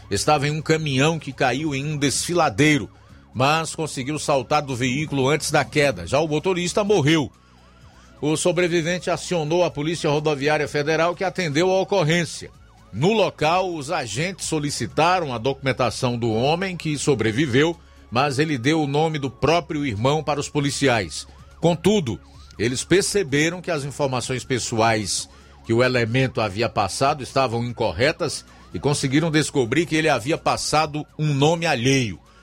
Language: Portuguese